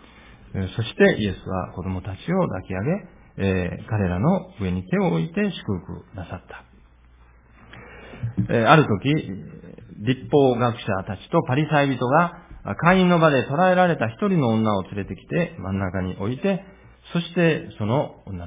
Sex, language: male, Japanese